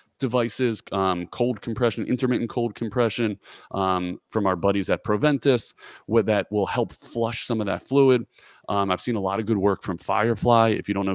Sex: male